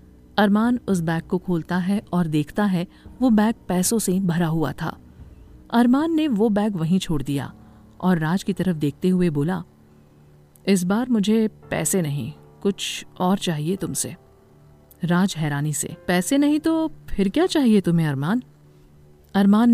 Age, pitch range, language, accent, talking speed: 50-69, 150-205 Hz, Hindi, native, 155 wpm